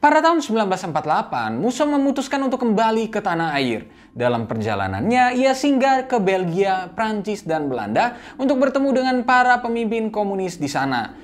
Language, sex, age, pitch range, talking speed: Indonesian, male, 20-39, 150-250 Hz, 145 wpm